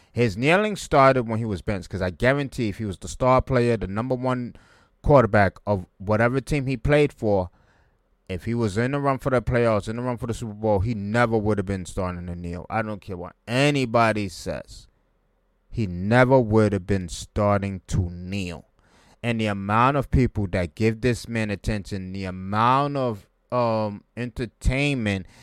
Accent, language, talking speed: American, English, 185 wpm